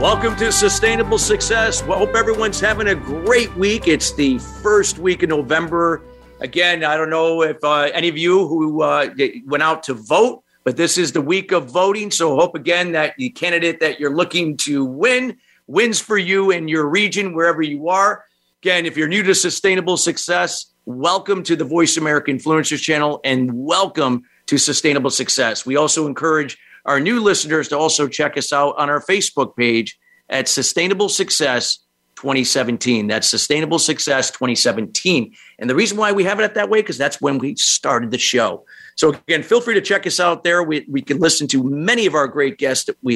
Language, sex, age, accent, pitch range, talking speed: English, male, 50-69, American, 140-185 Hz, 190 wpm